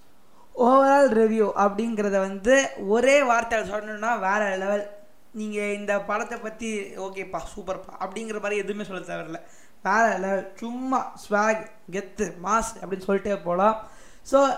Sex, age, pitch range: female, 20-39, 195-235 Hz